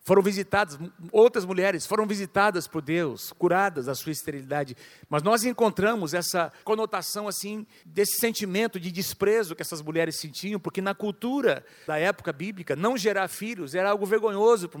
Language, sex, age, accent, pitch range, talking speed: Portuguese, male, 50-69, Brazilian, 165-205 Hz, 160 wpm